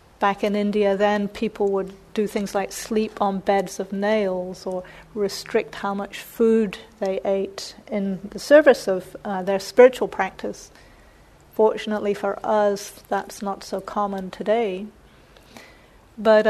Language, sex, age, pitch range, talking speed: English, female, 40-59, 195-225 Hz, 140 wpm